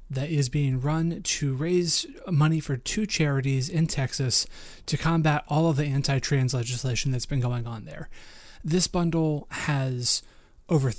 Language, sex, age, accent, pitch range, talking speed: English, male, 30-49, American, 130-165 Hz, 155 wpm